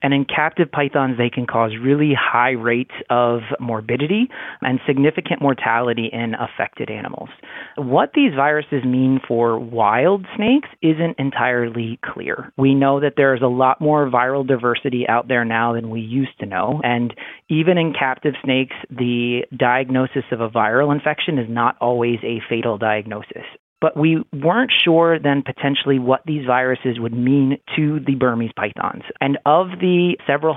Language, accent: English, American